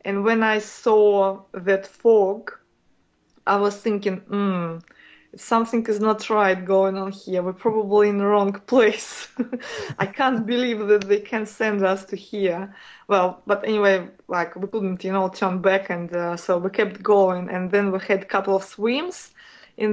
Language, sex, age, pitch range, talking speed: English, female, 20-39, 190-215 Hz, 175 wpm